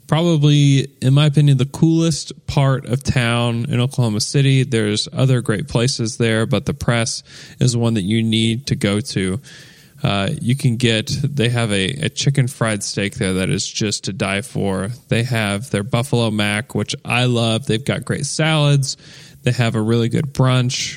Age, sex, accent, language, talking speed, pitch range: 10-29, male, American, English, 185 wpm, 115-145 Hz